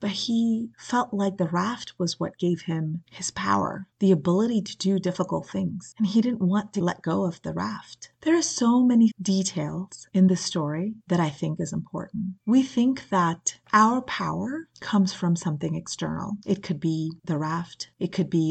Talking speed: 185 wpm